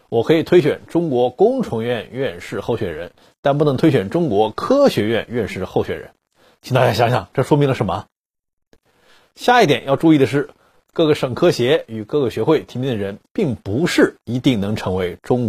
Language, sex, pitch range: Chinese, male, 120-165 Hz